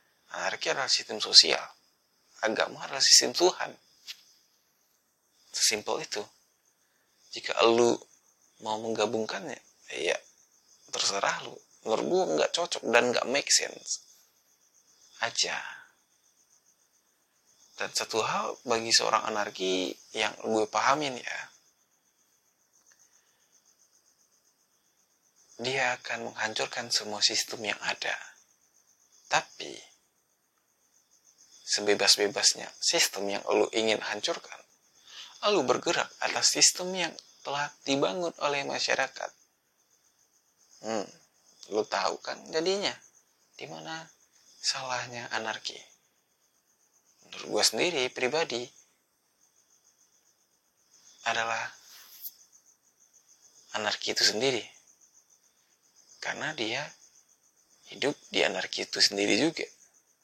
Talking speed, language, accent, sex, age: 85 wpm, Indonesian, native, male, 20-39